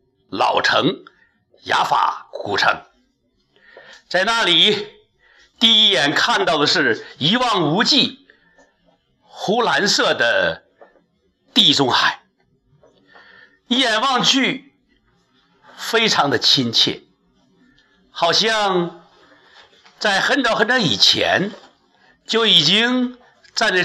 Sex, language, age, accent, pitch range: male, Chinese, 60-79, native, 180-255 Hz